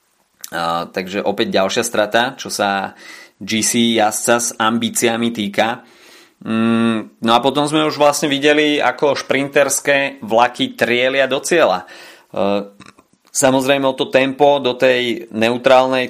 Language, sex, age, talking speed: Slovak, male, 30-49, 125 wpm